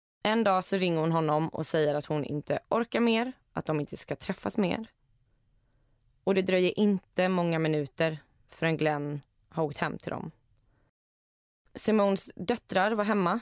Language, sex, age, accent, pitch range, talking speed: Swedish, female, 20-39, native, 150-190 Hz, 165 wpm